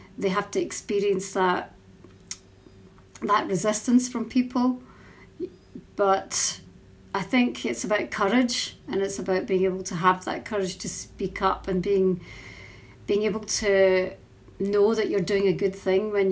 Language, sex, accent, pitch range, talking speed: English, female, British, 190-220 Hz, 145 wpm